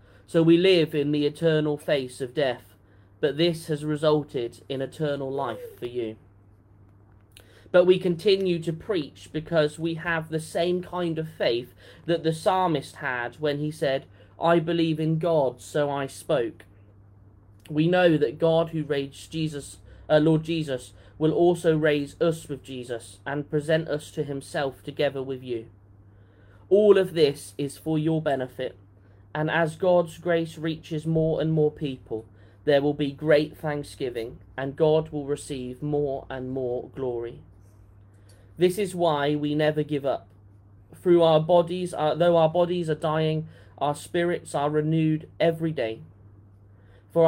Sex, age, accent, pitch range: male, 30-49, British, 115-160 Hz